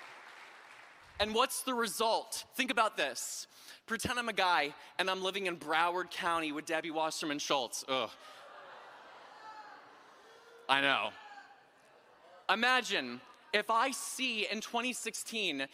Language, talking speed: English, 115 wpm